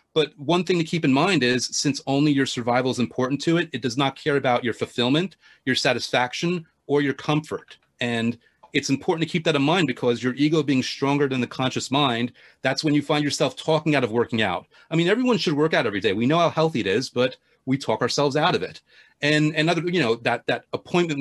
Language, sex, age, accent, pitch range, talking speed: English, male, 30-49, American, 120-150 Hz, 240 wpm